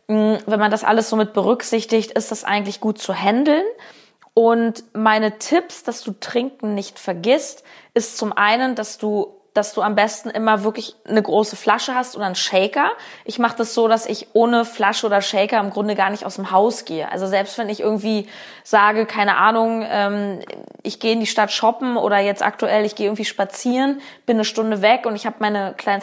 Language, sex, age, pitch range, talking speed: German, female, 20-39, 210-240 Hz, 200 wpm